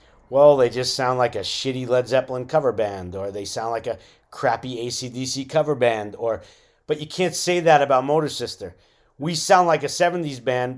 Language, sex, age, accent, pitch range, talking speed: English, male, 40-59, American, 120-150 Hz, 195 wpm